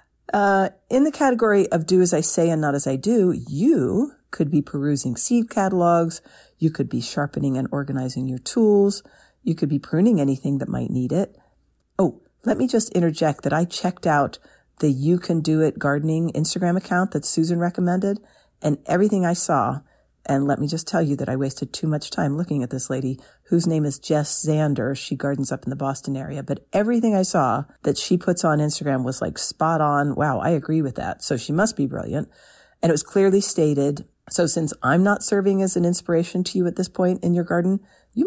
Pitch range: 140-185 Hz